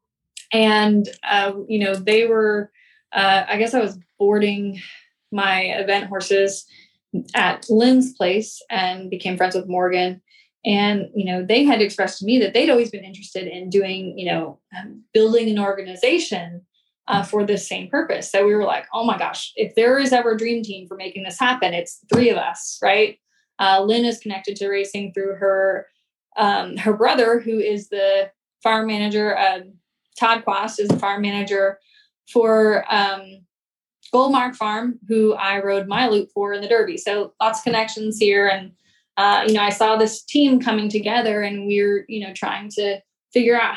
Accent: American